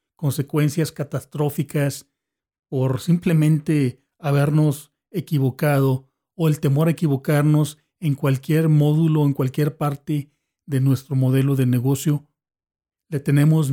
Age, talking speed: 40-59, 105 wpm